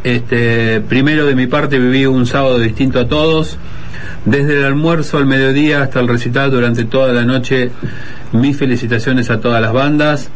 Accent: Argentinian